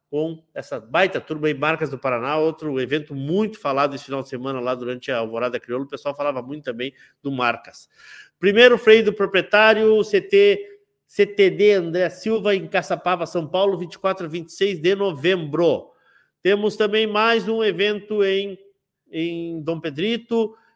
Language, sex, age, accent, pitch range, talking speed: Portuguese, male, 50-69, Brazilian, 150-200 Hz, 155 wpm